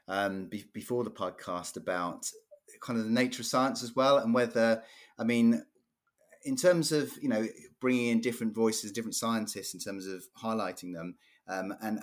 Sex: male